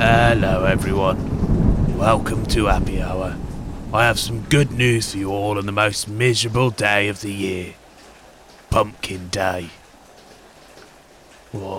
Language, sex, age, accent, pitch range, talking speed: English, male, 30-49, British, 100-125 Hz, 125 wpm